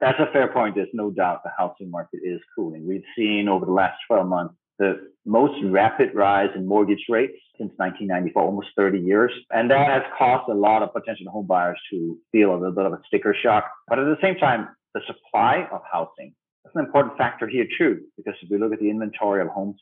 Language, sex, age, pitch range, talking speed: English, male, 40-59, 95-115 Hz, 225 wpm